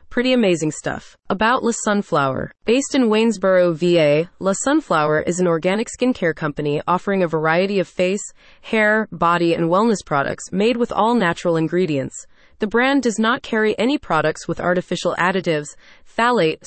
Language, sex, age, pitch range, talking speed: English, female, 20-39, 170-220 Hz, 155 wpm